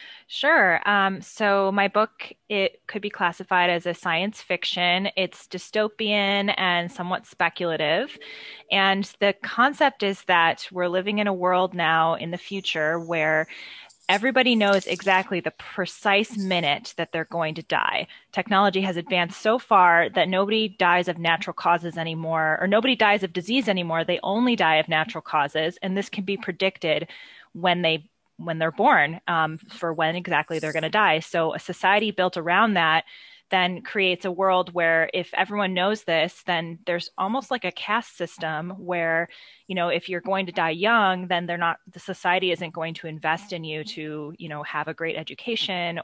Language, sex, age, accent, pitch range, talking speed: English, female, 20-39, American, 165-195 Hz, 175 wpm